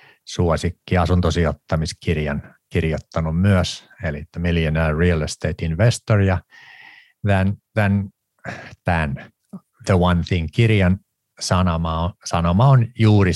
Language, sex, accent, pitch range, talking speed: Finnish, male, native, 80-95 Hz, 80 wpm